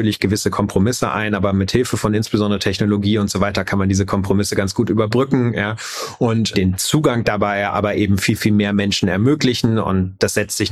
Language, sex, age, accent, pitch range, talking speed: German, male, 30-49, German, 105-130 Hz, 190 wpm